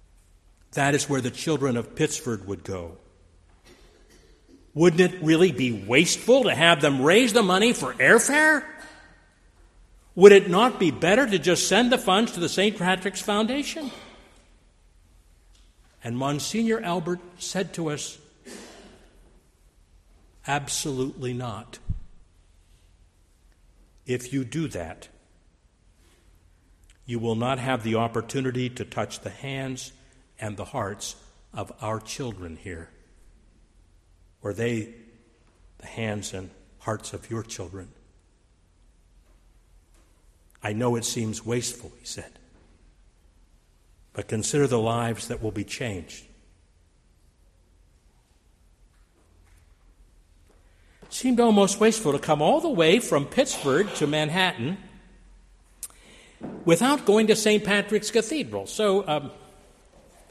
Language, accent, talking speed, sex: English, American, 110 wpm, male